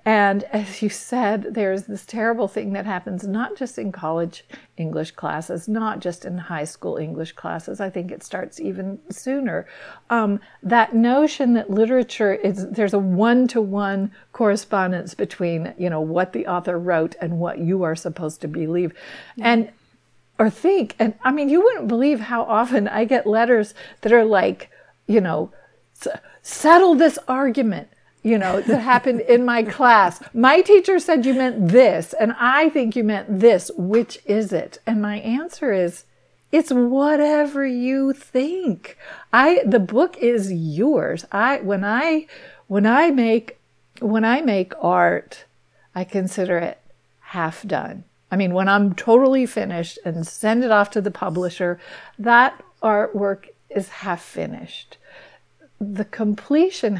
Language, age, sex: English, 50-69, female